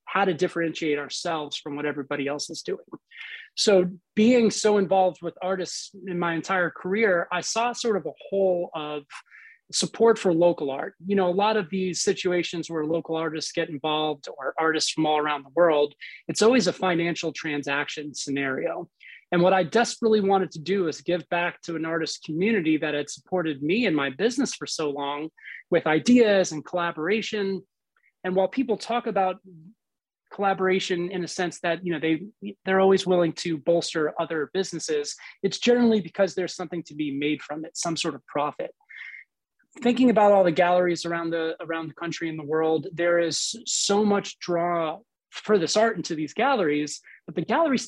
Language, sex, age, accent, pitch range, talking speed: English, male, 30-49, American, 160-200 Hz, 180 wpm